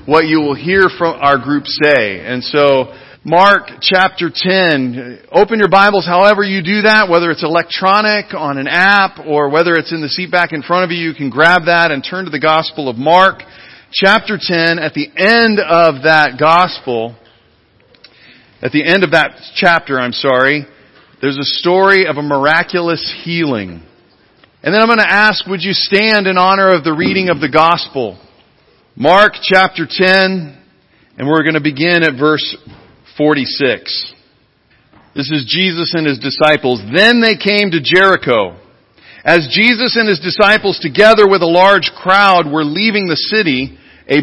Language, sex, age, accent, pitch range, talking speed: English, male, 40-59, American, 150-195 Hz, 170 wpm